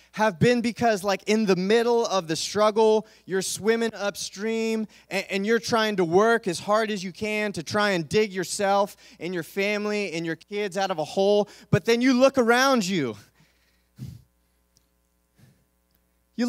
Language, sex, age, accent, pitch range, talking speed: English, male, 20-39, American, 185-240 Hz, 165 wpm